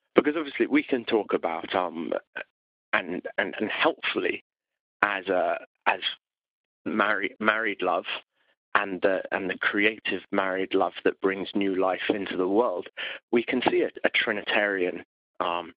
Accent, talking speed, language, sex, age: British, 145 wpm, English, male, 30-49